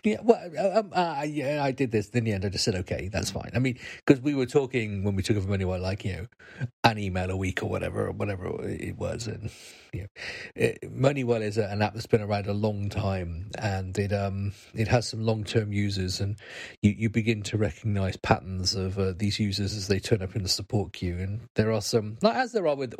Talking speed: 240 wpm